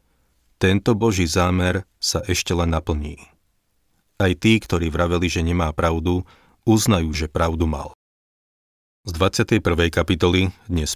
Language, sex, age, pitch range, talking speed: Slovak, male, 40-59, 80-95 Hz, 120 wpm